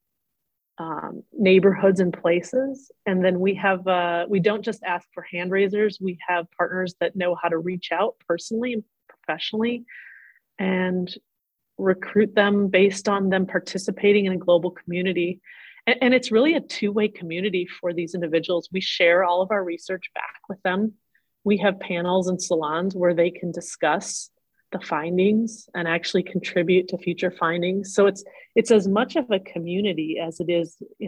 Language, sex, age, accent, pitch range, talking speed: English, female, 30-49, American, 175-200 Hz, 165 wpm